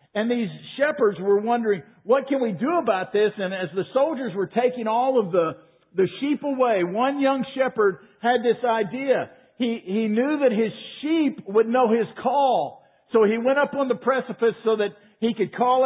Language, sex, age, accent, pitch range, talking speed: English, male, 50-69, American, 200-255 Hz, 195 wpm